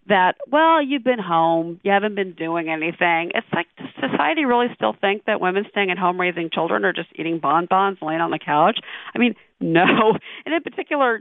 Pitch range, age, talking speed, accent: 180-250 Hz, 40-59, 205 wpm, American